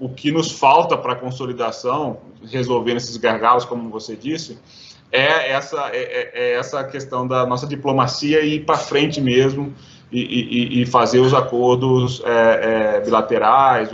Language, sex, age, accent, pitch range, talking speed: Portuguese, male, 20-39, Brazilian, 120-135 Hz, 150 wpm